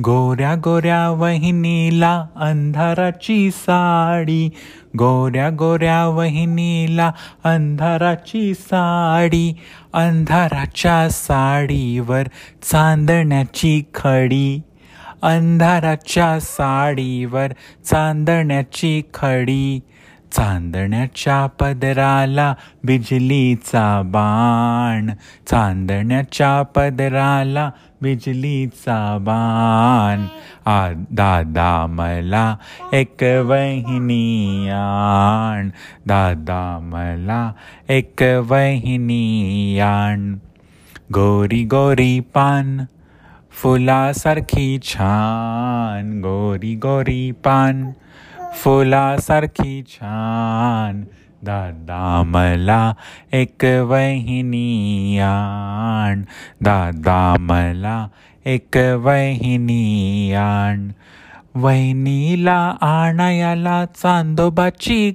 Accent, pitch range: native, 110-160 Hz